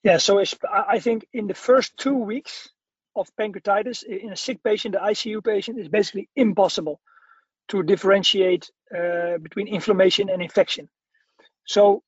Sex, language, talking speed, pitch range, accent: male, English, 145 wpm, 190-230 Hz, Dutch